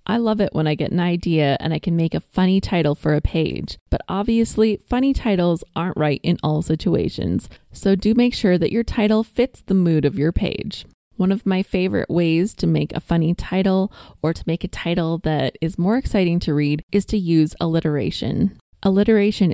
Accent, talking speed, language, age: American, 205 wpm, English, 20-39